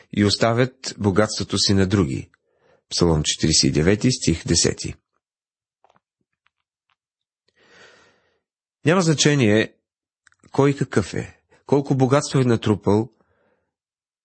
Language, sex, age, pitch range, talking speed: Bulgarian, male, 40-59, 105-135 Hz, 80 wpm